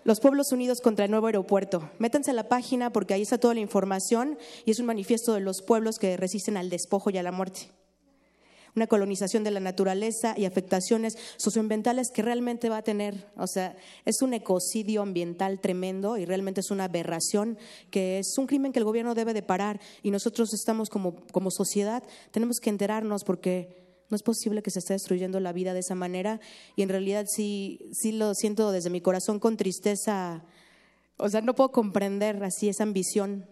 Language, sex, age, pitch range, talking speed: Spanish, female, 30-49, 190-230 Hz, 195 wpm